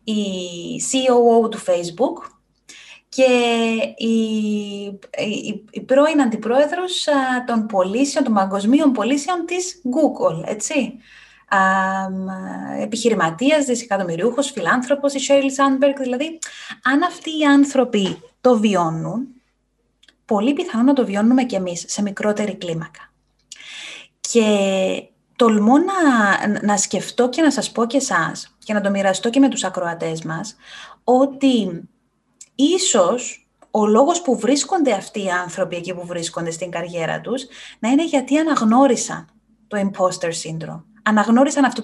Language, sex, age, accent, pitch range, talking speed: Greek, female, 20-39, native, 195-270 Hz, 125 wpm